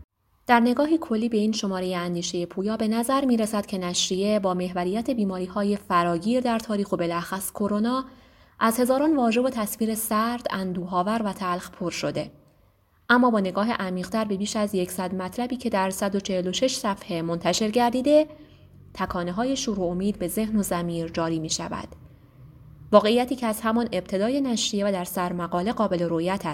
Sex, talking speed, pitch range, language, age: female, 160 wpm, 180-230 Hz, Persian, 20-39